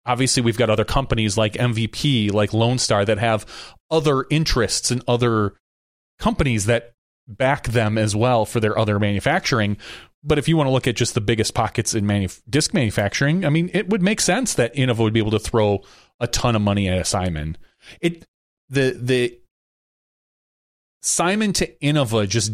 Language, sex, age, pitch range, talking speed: English, male, 30-49, 105-135 Hz, 180 wpm